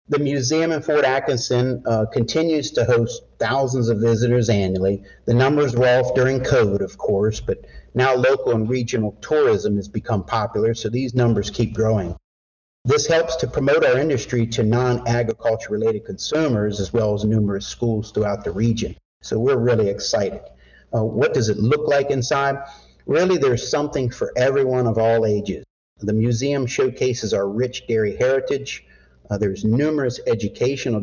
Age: 50-69